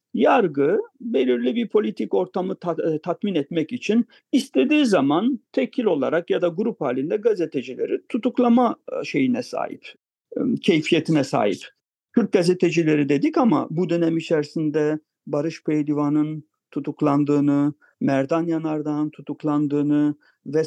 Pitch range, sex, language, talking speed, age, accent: 145-190 Hz, male, English, 105 wpm, 50-69, Turkish